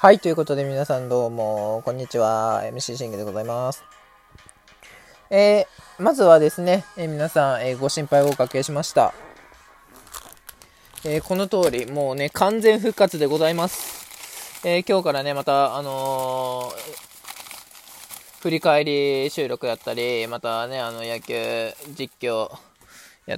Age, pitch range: 20-39, 130-205 Hz